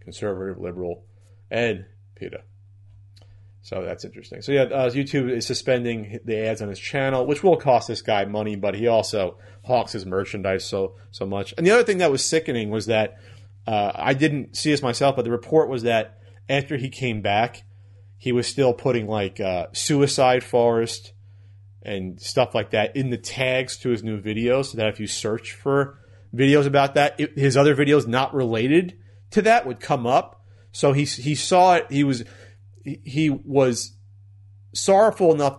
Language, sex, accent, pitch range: English, male, American, 100-135 Hz